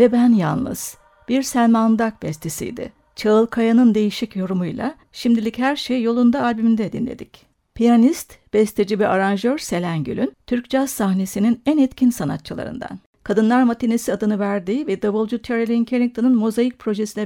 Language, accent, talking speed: Turkish, native, 130 wpm